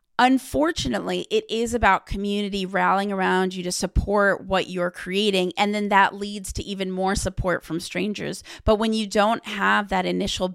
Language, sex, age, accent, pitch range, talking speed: English, female, 30-49, American, 185-215 Hz, 170 wpm